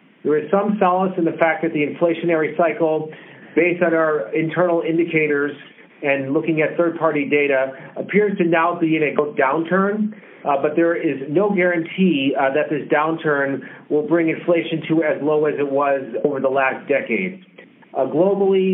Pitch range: 150-175 Hz